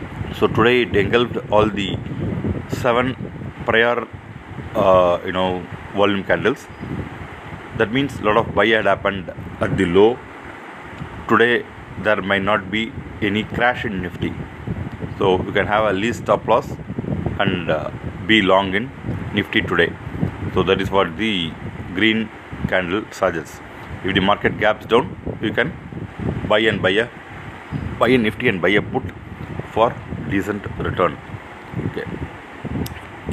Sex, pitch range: male, 95-115 Hz